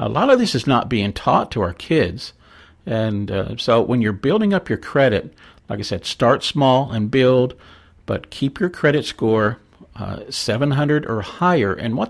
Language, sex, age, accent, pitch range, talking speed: English, male, 50-69, American, 105-140 Hz, 190 wpm